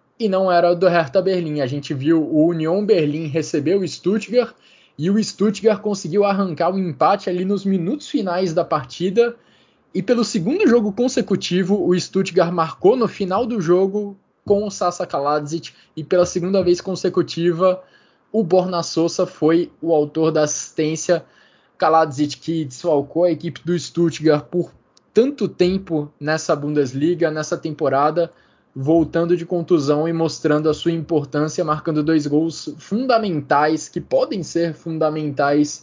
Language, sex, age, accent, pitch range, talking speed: Portuguese, male, 20-39, Brazilian, 150-180 Hz, 145 wpm